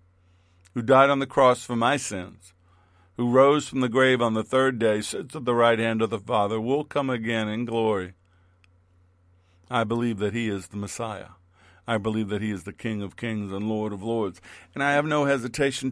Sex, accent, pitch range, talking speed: male, American, 105-135 Hz, 205 wpm